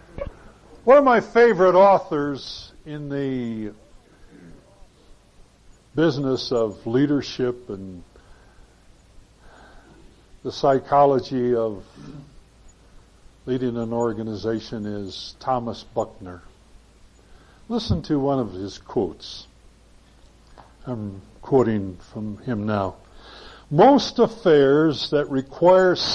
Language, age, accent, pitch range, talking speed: English, 60-79, American, 110-180 Hz, 80 wpm